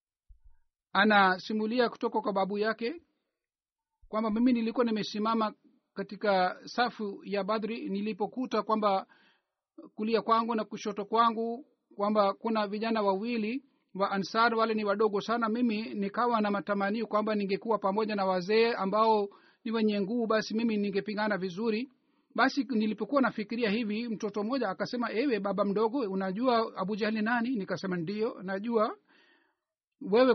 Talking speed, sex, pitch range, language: 130 wpm, male, 205-240 Hz, Swahili